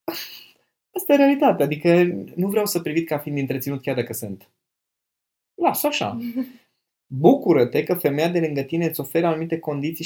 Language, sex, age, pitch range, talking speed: Romanian, male, 20-39, 125-160 Hz, 155 wpm